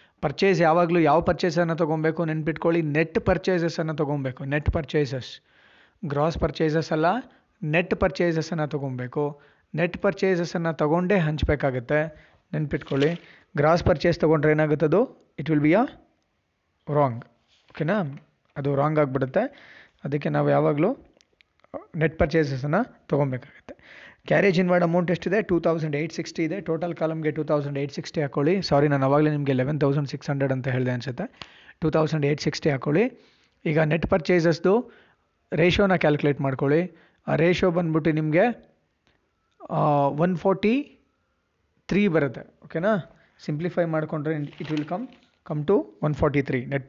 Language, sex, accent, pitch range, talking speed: Kannada, male, native, 150-175 Hz, 125 wpm